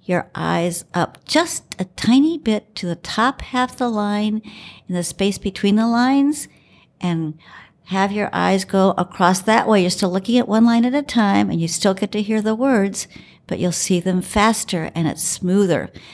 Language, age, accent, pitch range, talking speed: English, 60-79, American, 170-210 Hz, 195 wpm